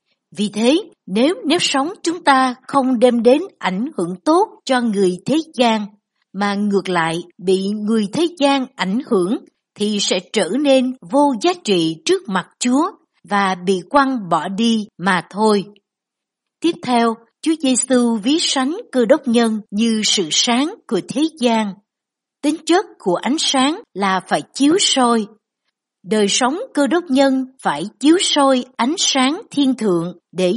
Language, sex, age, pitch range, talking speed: Vietnamese, female, 60-79, 200-285 Hz, 160 wpm